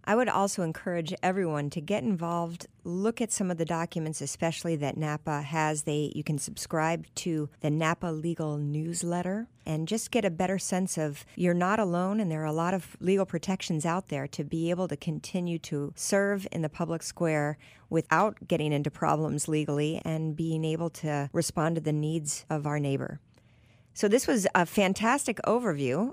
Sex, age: female, 50-69